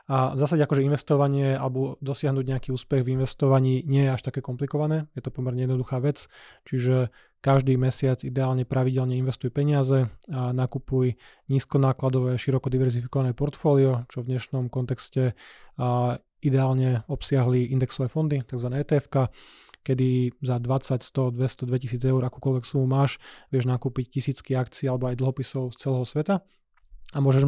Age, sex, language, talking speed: 30-49, male, Slovak, 145 wpm